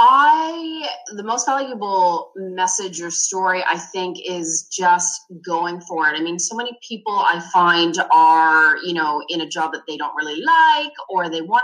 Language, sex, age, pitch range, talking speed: English, female, 20-39, 160-230 Hz, 180 wpm